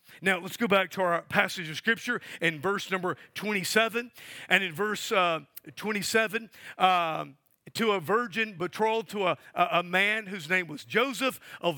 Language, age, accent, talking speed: English, 50-69, American, 170 wpm